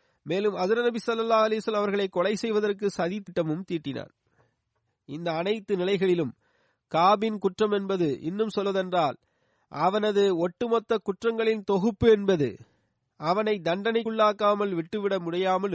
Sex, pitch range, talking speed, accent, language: male, 175-230 Hz, 85 wpm, native, Tamil